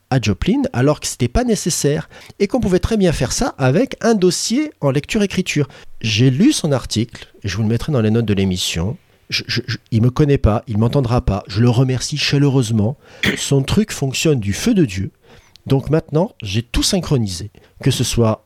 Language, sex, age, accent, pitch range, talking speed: French, male, 40-59, French, 110-155 Hz, 200 wpm